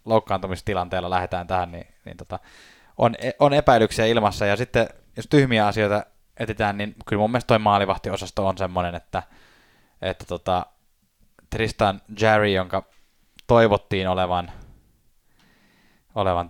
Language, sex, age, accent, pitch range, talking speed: Finnish, male, 10-29, native, 90-110 Hz, 120 wpm